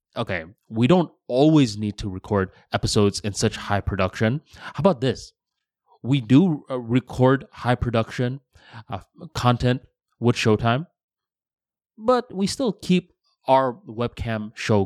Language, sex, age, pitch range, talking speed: English, male, 20-39, 105-145 Hz, 125 wpm